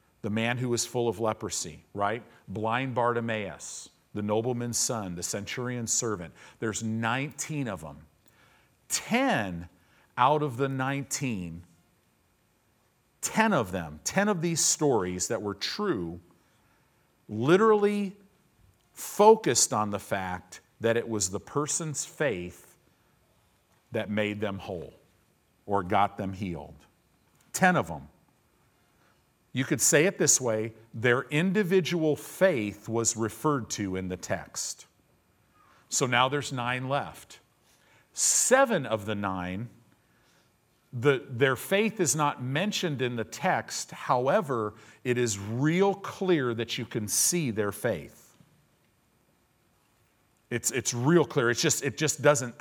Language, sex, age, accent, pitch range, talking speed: English, male, 50-69, American, 100-145 Hz, 120 wpm